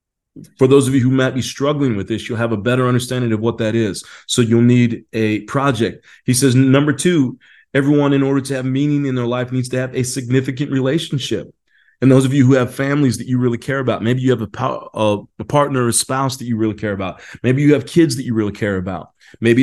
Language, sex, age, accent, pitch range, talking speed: English, male, 30-49, American, 115-135 Hz, 240 wpm